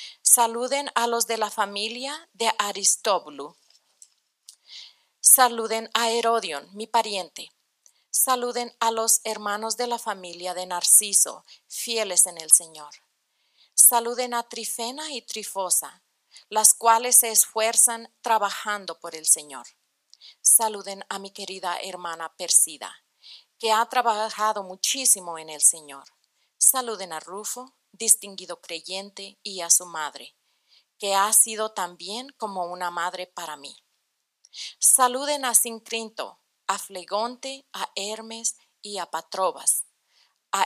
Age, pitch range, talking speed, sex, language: 40-59, 185-235 Hz, 120 wpm, female, English